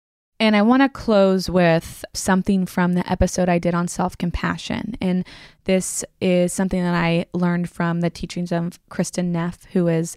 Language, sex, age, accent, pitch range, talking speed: English, female, 20-39, American, 175-195 Hz, 170 wpm